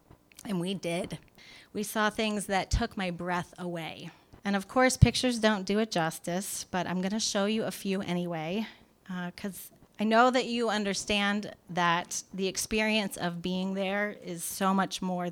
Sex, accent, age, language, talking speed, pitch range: female, American, 30-49, English, 175 wpm, 170-210 Hz